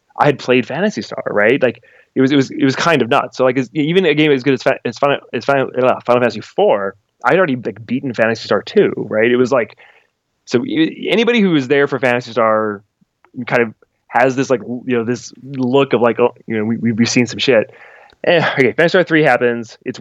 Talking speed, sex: 245 wpm, male